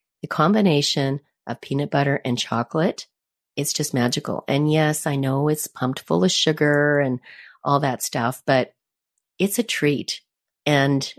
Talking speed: 150 wpm